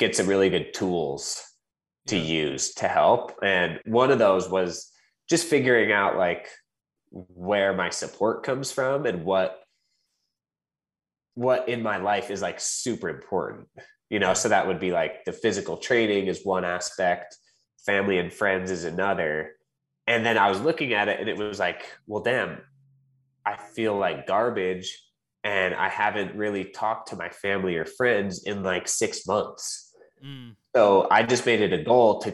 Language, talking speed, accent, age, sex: English, 165 wpm, American, 20-39, male